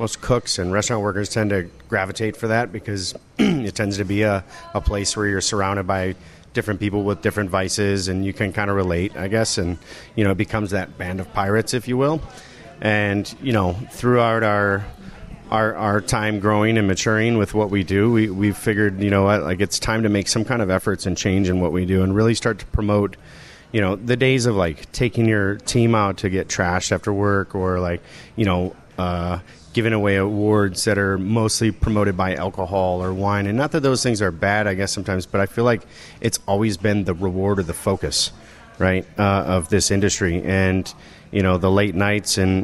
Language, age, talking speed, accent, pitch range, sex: English, 30-49, 215 wpm, American, 95-110 Hz, male